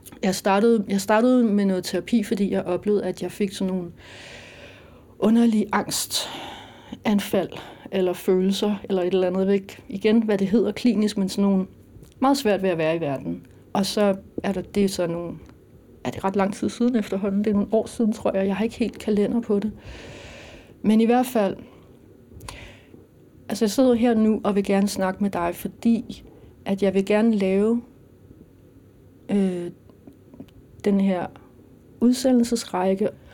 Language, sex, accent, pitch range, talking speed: Danish, female, native, 185-225 Hz, 165 wpm